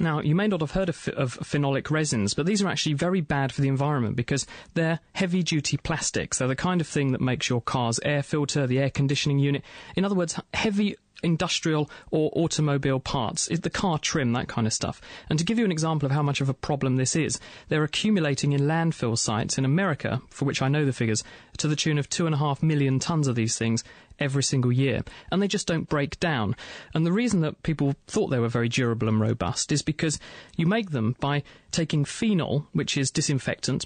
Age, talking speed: 30-49, 215 wpm